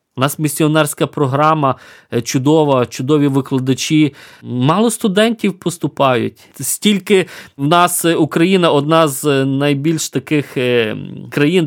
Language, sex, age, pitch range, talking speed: Ukrainian, male, 20-39, 130-170 Hz, 100 wpm